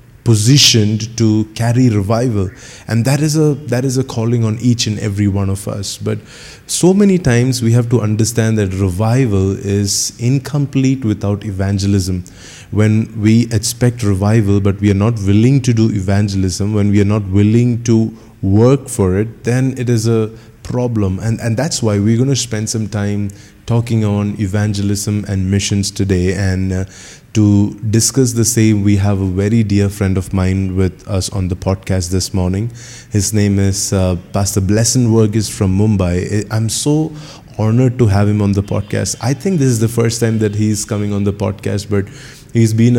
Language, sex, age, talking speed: English, male, 20-39, 185 wpm